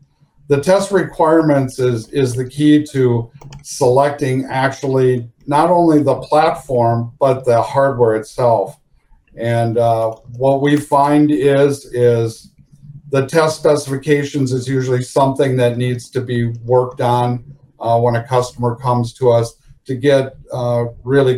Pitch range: 125-145 Hz